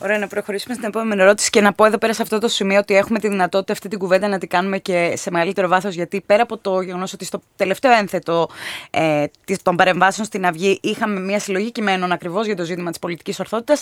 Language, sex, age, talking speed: Greek, female, 20-39, 235 wpm